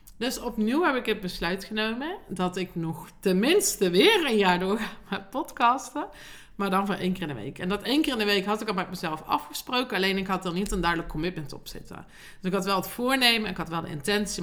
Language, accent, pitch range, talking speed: Dutch, Dutch, 180-230 Hz, 245 wpm